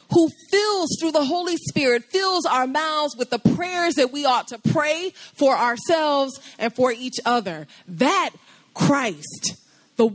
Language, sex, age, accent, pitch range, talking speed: English, female, 30-49, American, 210-290 Hz, 155 wpm